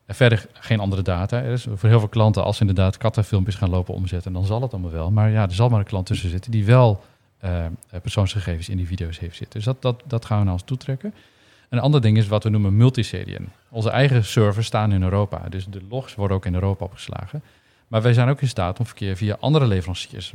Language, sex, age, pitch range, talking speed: Dutch, male, 40-59, 95-120 Hz, 245 wpm